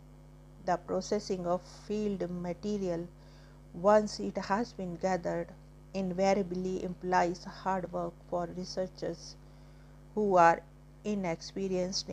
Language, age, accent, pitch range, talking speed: English, 50-69, Indian, 180-205 Hz, 95 wpm